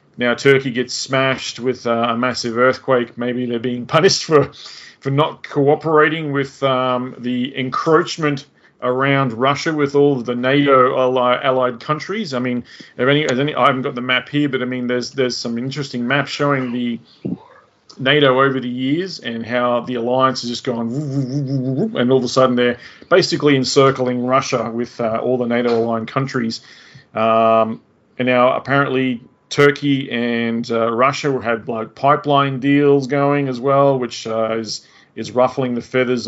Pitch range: 120-140 Hz